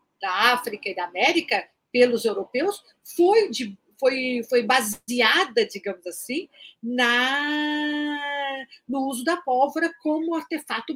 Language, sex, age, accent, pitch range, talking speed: Portuguese, female, 50-69, Brazilian, 220-285 Hz, 115 wpm